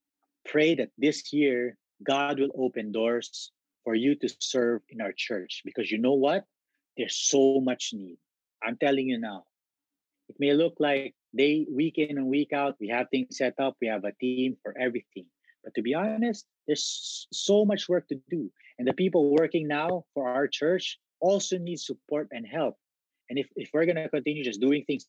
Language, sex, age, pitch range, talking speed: English, male, 30-49, 115-150 Hz, 195 wpm